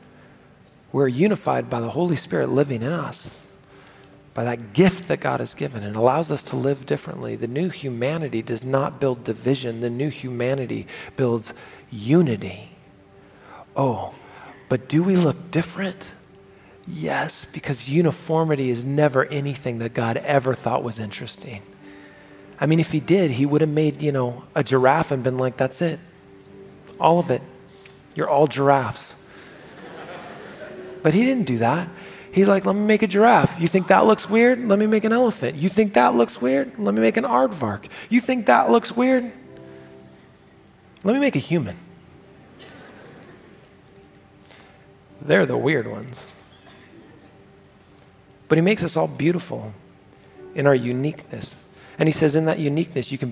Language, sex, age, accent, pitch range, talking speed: English, male, 40-59, American, 120-170 Hz, 155 wpm